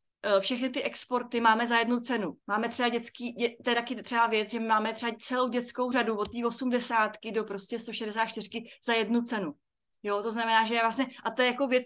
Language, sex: Czech, female